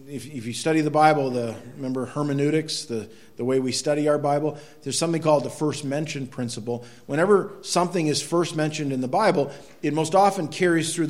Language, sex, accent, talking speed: English, male, American, 195 wpm